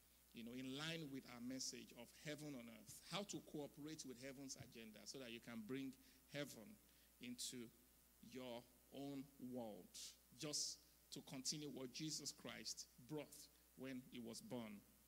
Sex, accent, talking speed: male, Nigerian, 150 wpm